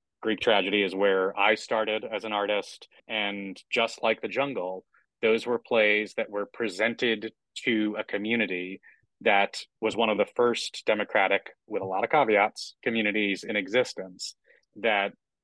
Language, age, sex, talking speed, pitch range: English, 30-49, male, 150 wpm, 100-115 Hz